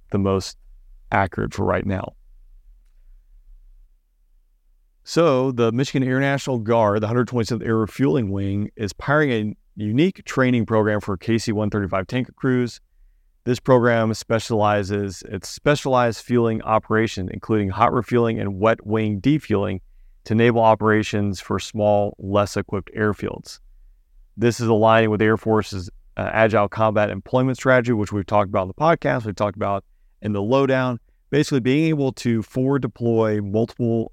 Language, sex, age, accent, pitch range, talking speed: English, male, 40-59, American, 95-115 Hz, 145 wpm